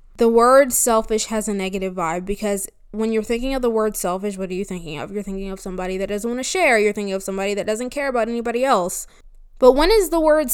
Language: English